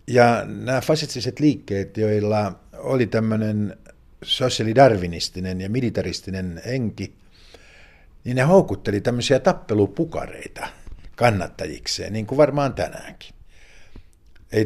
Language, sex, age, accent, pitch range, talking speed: Finnish, male, 50-69, native, 95-120 Hz, 90 wpm